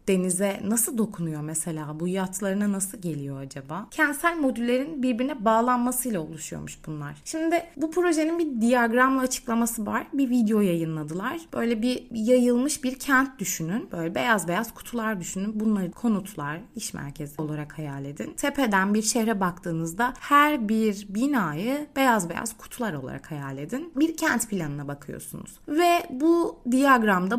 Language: Turkish